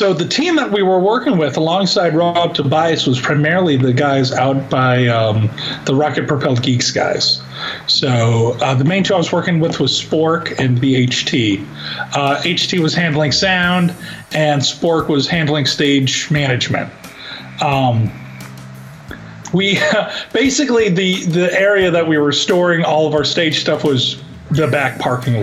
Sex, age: male, 40-59